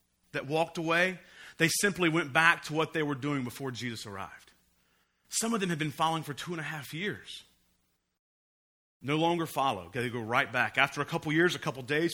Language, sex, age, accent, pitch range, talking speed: English, male, 40-59, American, 130-175 Hz, 205 wpm